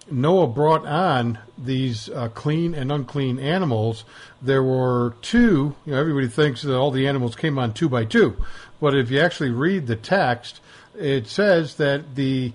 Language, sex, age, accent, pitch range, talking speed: English, male, 50-69, American, 120-150 Hz, 170 wpm